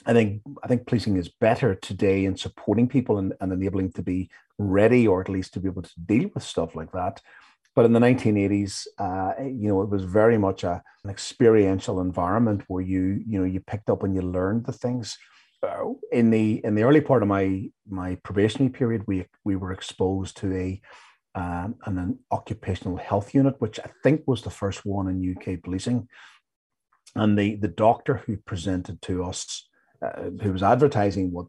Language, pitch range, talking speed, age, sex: English, 95-115 Hz, 200 wpm, 40-59, male